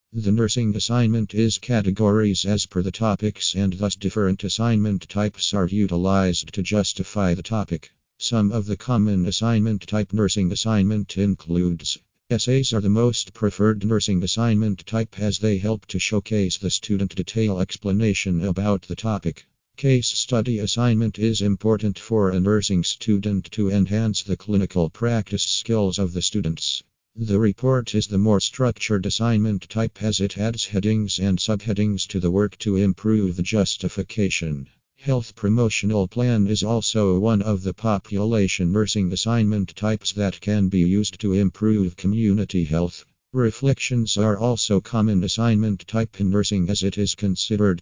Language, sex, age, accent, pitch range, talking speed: English, male, 50-69, American, 95-110 Hz, 150 wpm